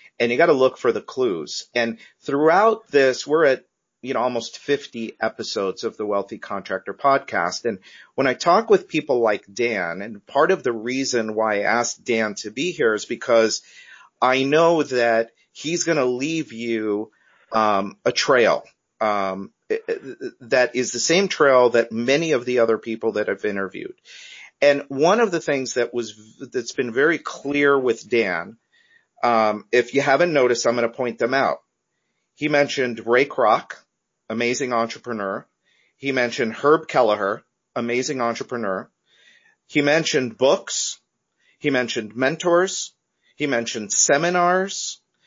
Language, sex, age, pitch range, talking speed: English, male, 50-69, 115-160 Hz, 155 wpm